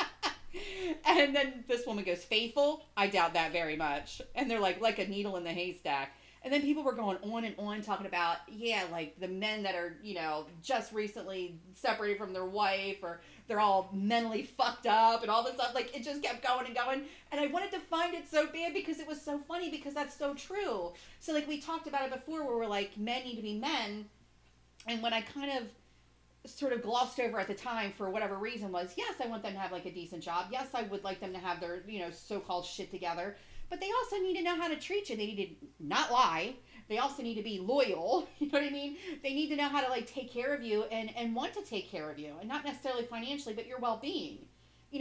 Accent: American